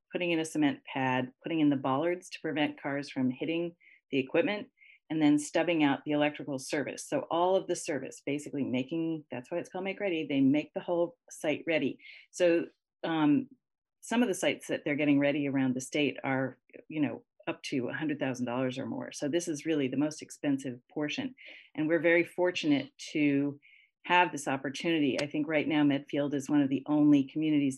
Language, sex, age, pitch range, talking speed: English, female, 40-59, 140-180 Hz, 195 wpm